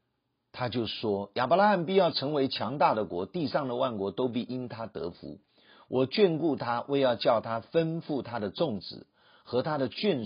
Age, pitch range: 50-69, 120-170 Hz